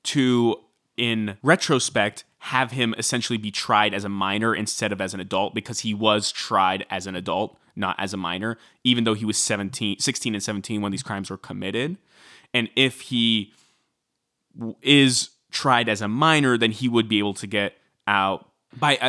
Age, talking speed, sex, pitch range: 20-39, 175 wpm, male, 105-130 Hz